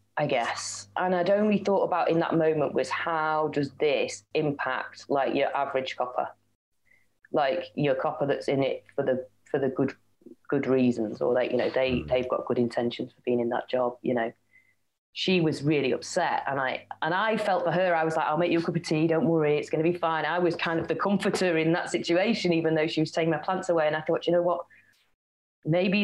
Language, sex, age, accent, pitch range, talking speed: English, female, 30-49, British, 135-170 Hz, 230 wpm